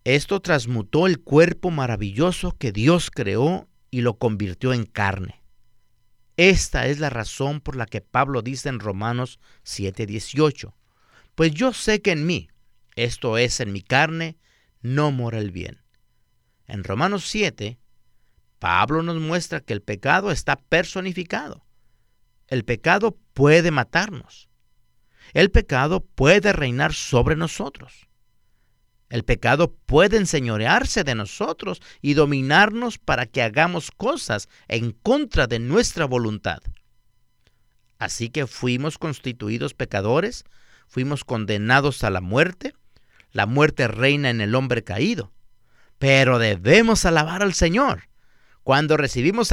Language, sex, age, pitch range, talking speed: Spanish, male, 50-69, 115-165 Hz, 125 wpm